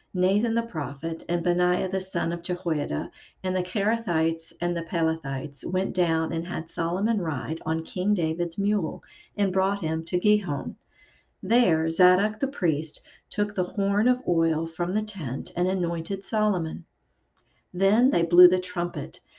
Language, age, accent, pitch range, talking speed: English, 50-69, American, 165-195 Hz, 155 wpm